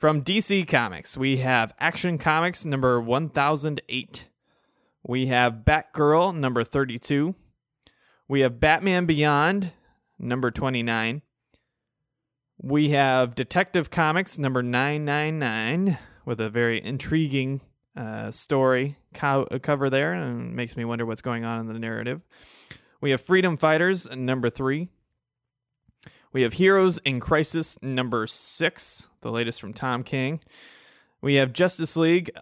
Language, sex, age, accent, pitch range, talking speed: English, male, 20-39, American, 120-155 Hz, 120 wpm